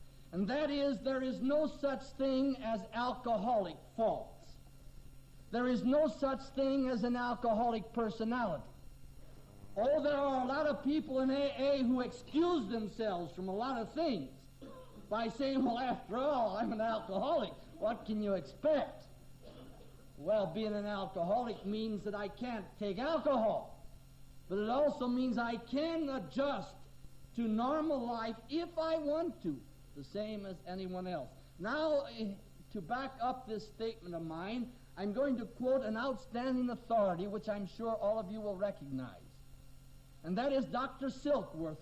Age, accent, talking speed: 60-79, American, 150 wpm